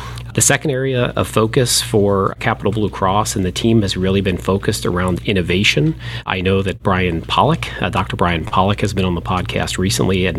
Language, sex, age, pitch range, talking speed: English, male, 40-59, 95-115 Hz, 195 wpm